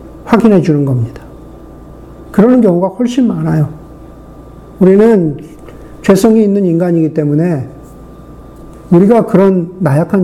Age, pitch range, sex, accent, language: 50-69, 160-220 Hz, male, native, Korean